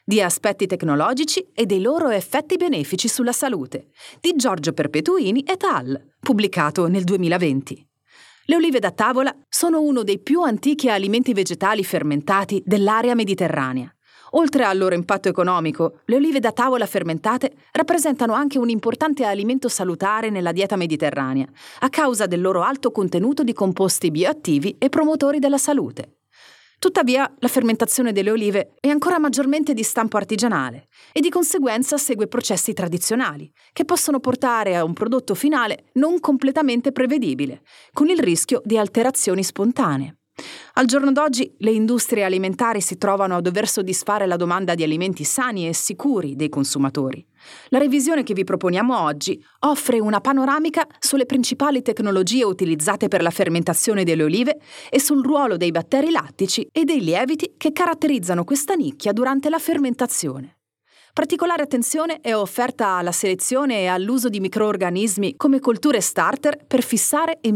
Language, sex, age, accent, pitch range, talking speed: Italian, female, 30-49, native, 190-280 Hz, 150 wpm